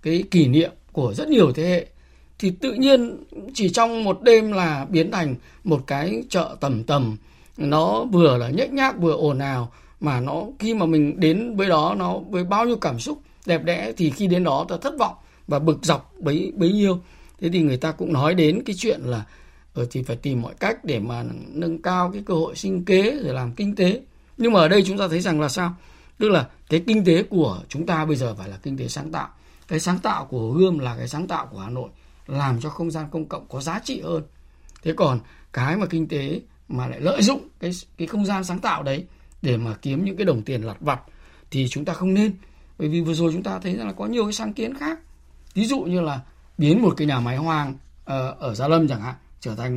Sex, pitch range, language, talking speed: male, 140-195 Hz, Vietnamese, 240 wpm